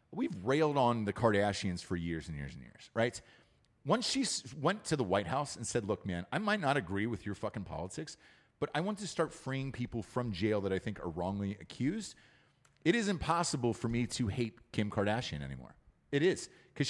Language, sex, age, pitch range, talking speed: English, male, 30-49, 105-150 Hz, 210 wpm